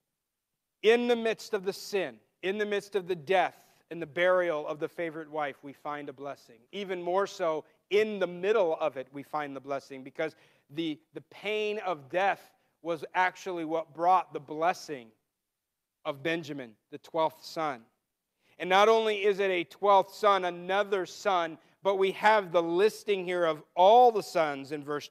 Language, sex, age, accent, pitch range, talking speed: English, male, 40-59, American, 160-205 Hz, 175 wpm